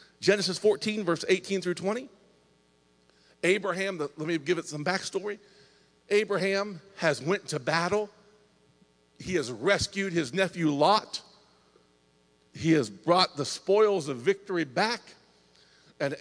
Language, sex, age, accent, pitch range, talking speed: English, male, 50-69, American, 125-205 Hz, 120 wpm